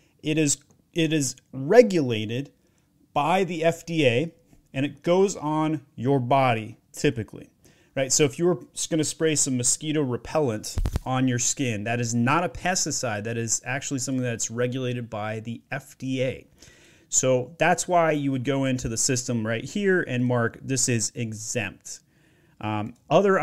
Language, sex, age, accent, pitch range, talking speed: English, male, 30-49, American, 115-150 Hz, 160 wpm